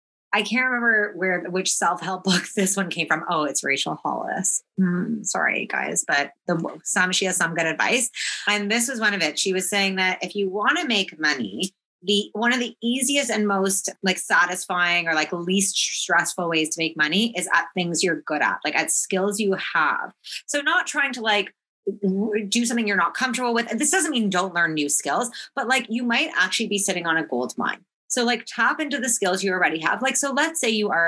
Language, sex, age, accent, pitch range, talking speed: English, female, 30-49, American, 170-220 Hz, 220 wpm